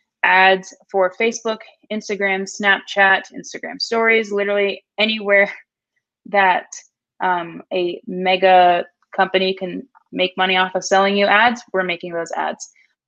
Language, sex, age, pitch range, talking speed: English, female, 20-39, 185-215 Hz, 110 wpm